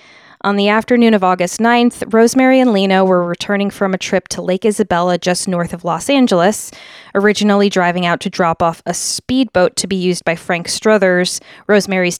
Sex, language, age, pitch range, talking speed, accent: female, English, 20-39, 175-215 Hz, 180 wpm, American